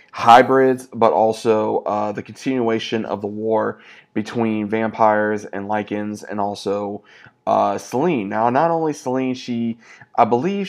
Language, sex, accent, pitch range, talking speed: English, male, American, 105-115 Hz, 135 wpm